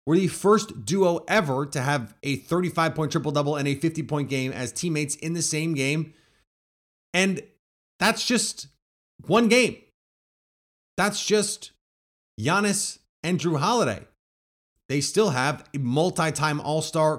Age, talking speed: 30-49, 130 wpm